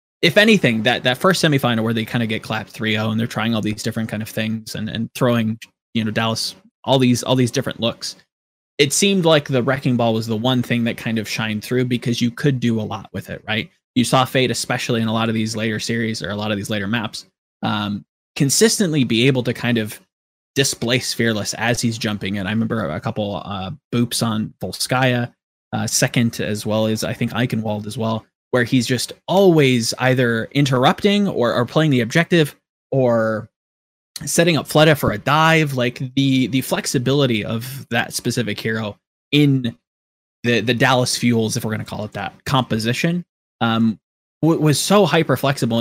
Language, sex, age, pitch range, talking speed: English, male, 20-39, 110-140 Hz, 195 wpm